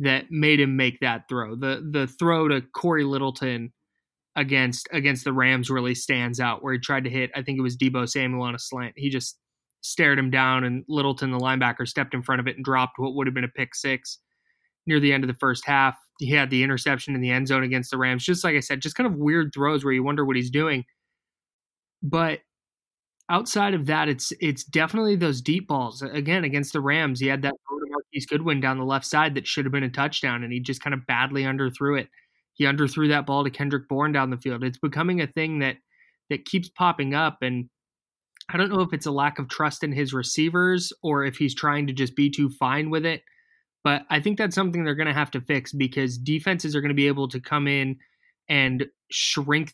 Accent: American